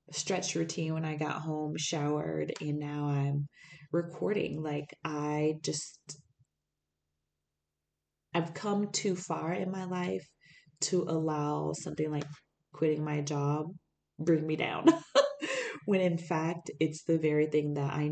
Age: 20-39